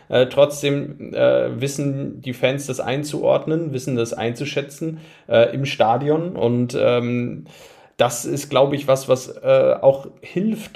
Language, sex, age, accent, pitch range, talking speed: German, male, 40-59, German, 120-145 Hz, 140 wpm